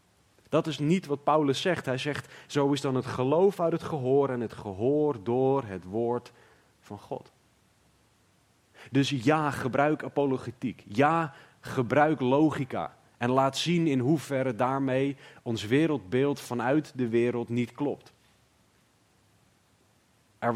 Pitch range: 115-140 Hz